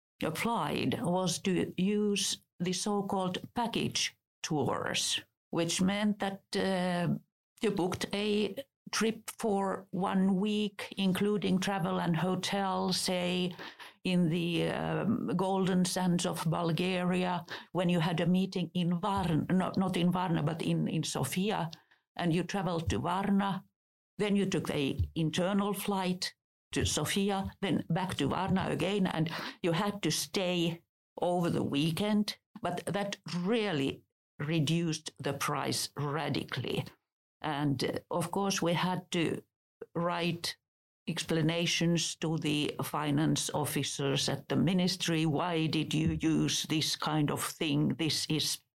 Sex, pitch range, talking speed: female, 160-195 Hz, 130 wpm